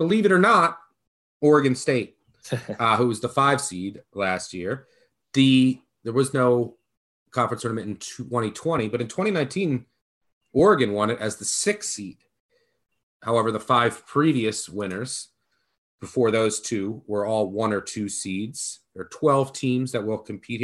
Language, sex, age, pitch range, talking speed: English, male, 30-49, 105-135 Hz, 155 wpm